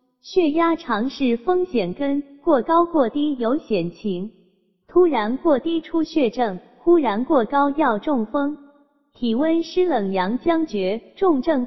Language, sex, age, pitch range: Chinese, female, 20-39, 225-310 Hz